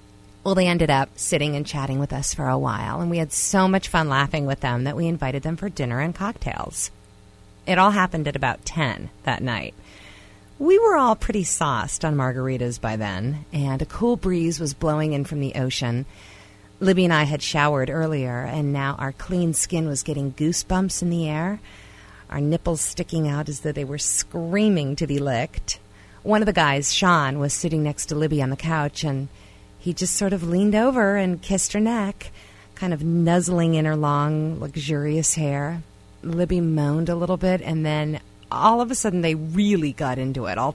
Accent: American